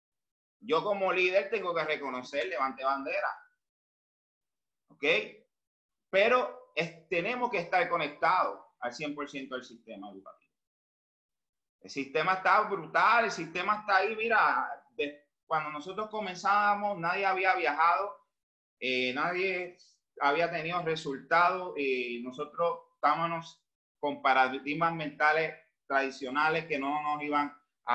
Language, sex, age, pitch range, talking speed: Spanish, male, 30-49, 140-190 Hz, 110 wpm